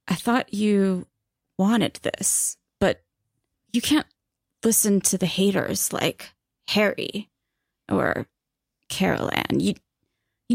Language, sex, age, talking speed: English, female, 20-39, 100 wpm